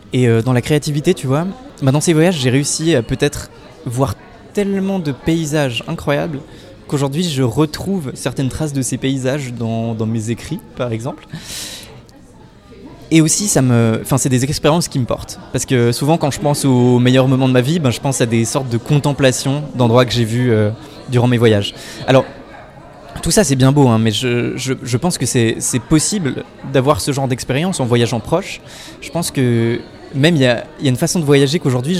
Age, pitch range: 20-39, 120-150 Hz